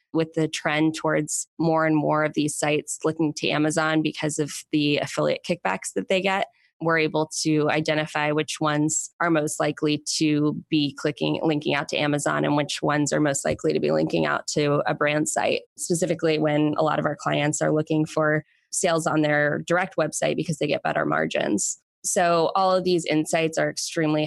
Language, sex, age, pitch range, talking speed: English, female, 20-39, 150-160 Hz, 195 wpm